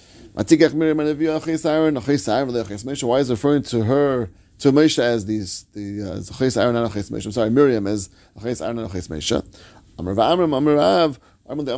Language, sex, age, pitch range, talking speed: English, male, 30-49, 110-145 Hz, 75 wpm